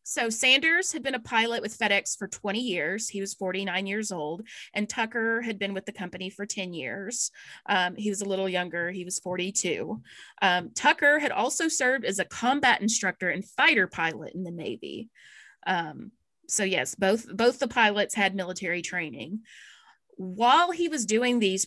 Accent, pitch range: American, 185-230 Hz